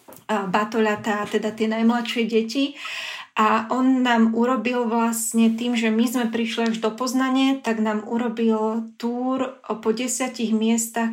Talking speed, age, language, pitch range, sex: 135 wpm, 20-39, Slovak, 215-230 Hz, female